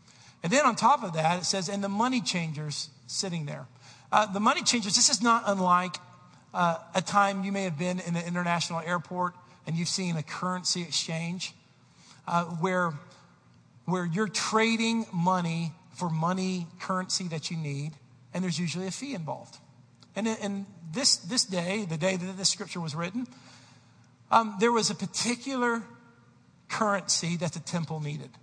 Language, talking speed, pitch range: English, 170 wpm, 165-215 Hz